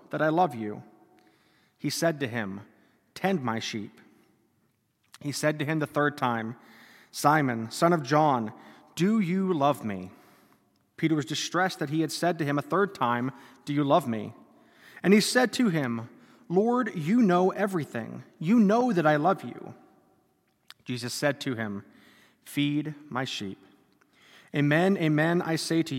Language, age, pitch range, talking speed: English, 30-49, 130-180 Hz, 160 wpm